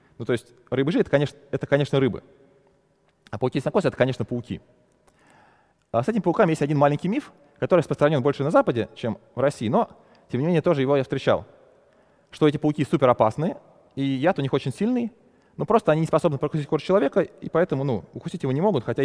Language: Russian